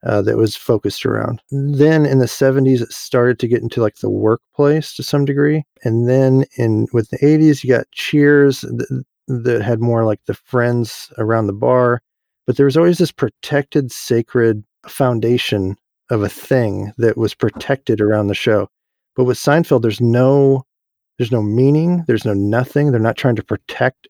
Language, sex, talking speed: English, male, 180 wpm